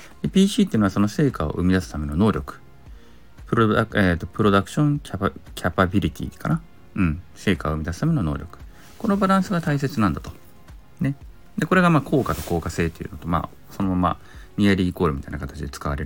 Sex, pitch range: male, 80-110 Hz